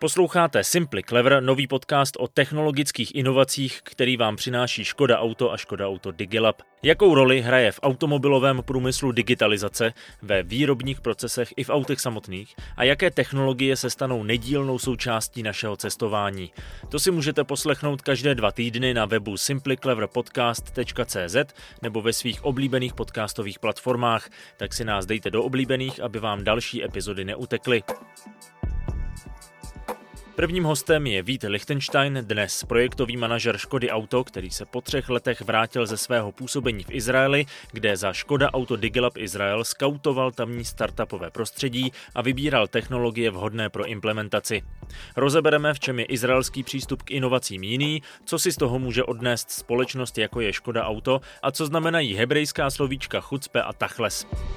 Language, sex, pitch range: Czech, male, 110-135 Hz